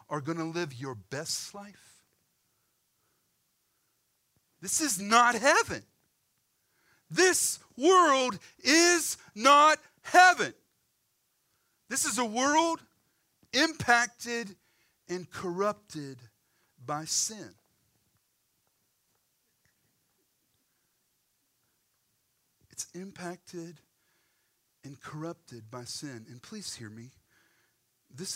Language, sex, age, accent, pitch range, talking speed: English, male, 40-59, American, 125-175 Hz, 75 wpm